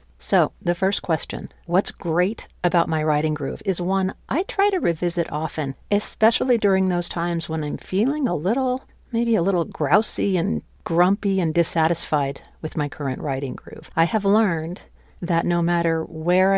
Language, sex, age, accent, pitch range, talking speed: English, female, 50-69, American, 155-190 Hz, 165 wpm